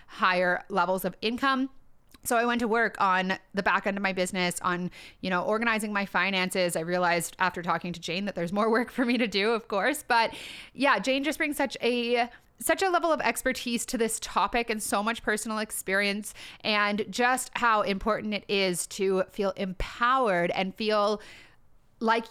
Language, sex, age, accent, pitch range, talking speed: English, female, 30-49, American, 190-235 Hz, 190 wpm